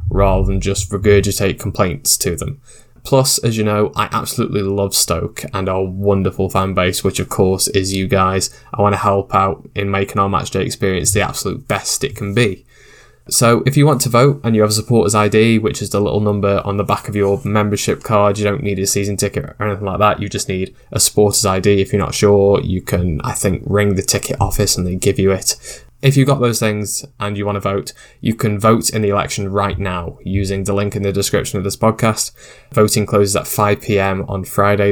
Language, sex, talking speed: English, male, 230 wpm